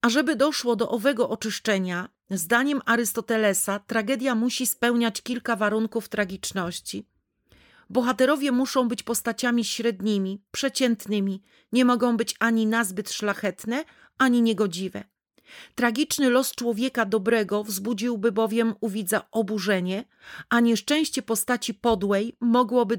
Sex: female